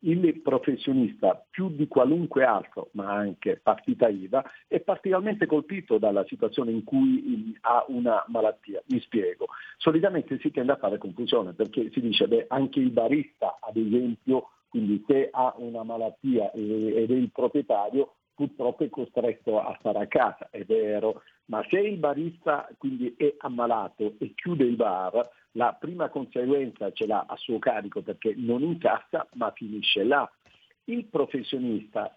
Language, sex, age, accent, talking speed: Italian, male, 50-69, native, 155 wpm